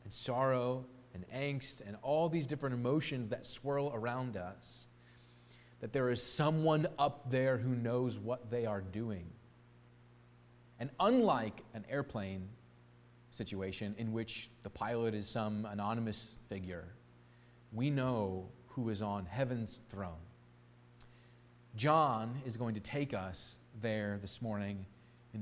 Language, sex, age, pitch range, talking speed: English, male, 30-49, 105-130 Hz, 130 wpm